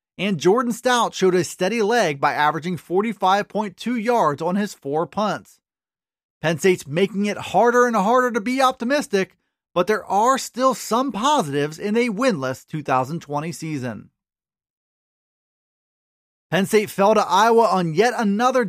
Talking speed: 140 wpm